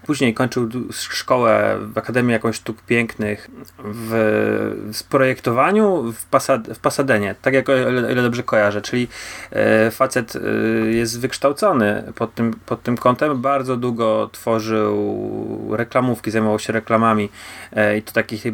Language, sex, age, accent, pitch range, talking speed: Polish, male, 30-49, native, 110-130 Hz, 140 wpm